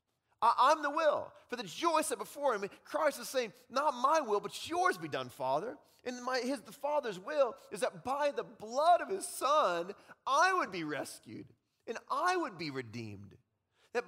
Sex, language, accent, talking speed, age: male, English, American, 190 wpm, 30-49